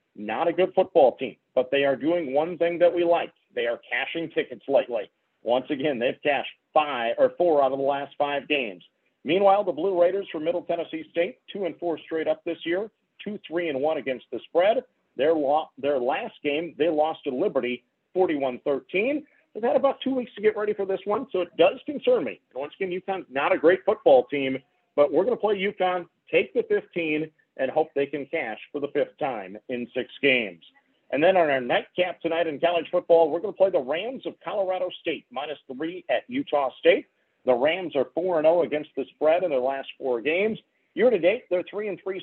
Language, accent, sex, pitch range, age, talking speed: English, American, male, 140-190 Hz, 40-59, 220 wpm